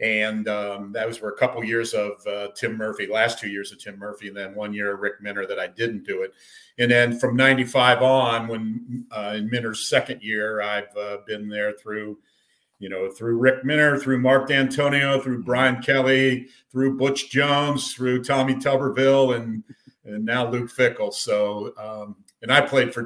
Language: English